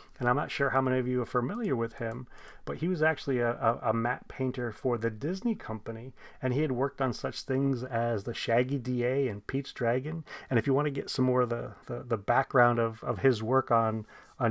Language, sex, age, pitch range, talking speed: English, male, 30-49, 115-135 Hz, 240 wpm